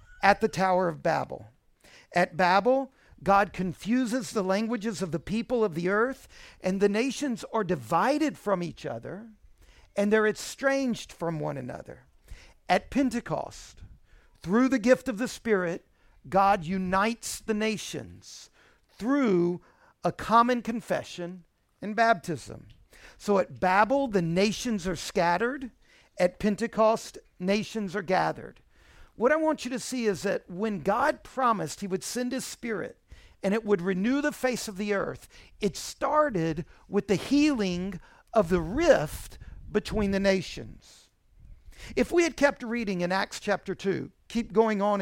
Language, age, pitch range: English, 50-69, 185-245 Hz